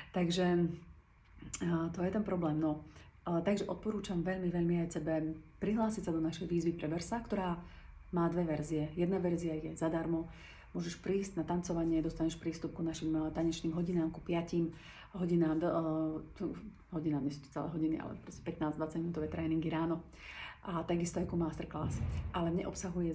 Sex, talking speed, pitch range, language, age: female, 150 wpm, 160-175 Hz, Slovak, 30-49